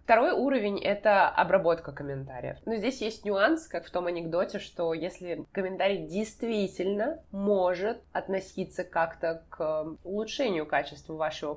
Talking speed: 125 wpm